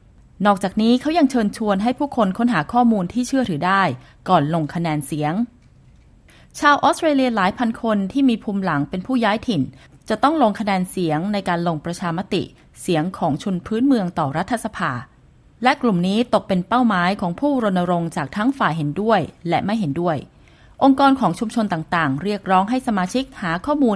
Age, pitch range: 20-39, 175-235 Hz